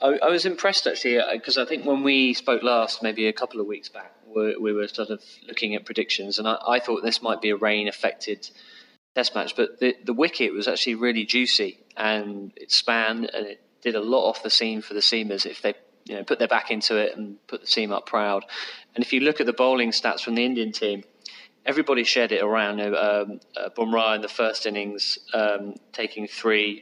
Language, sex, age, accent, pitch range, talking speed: English, male, 30-49, British, 105-120 Hz, 215 wpm